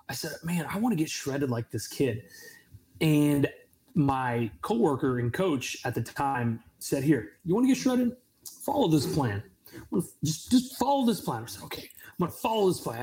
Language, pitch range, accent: English, 135-200 Hz, American